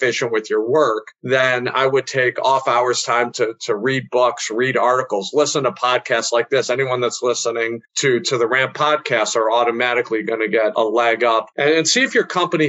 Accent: American